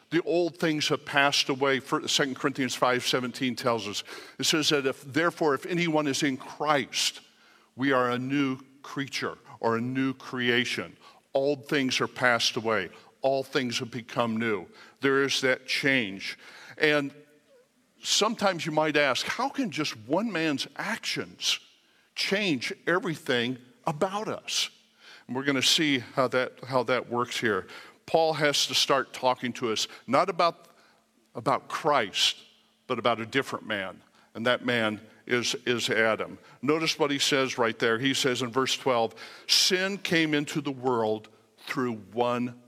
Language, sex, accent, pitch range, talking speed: English, male, American, 125-155 Hz, 155 wpm